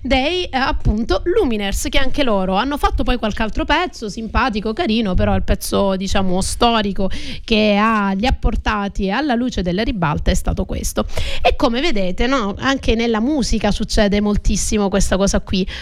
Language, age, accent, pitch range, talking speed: Italian, 30-49, native, 210-260 Hz, 165 wpm